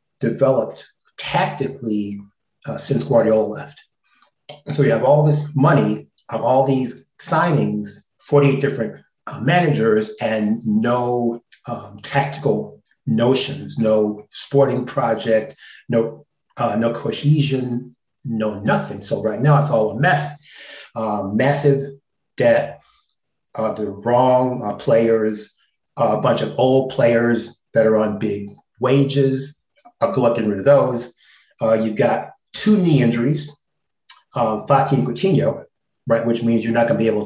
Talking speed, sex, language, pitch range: 135 wpm, male, English, 110-145 Hz